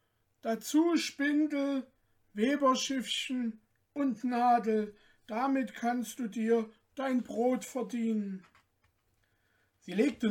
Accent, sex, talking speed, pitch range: German, male, 80 wpm, 170-225 Hz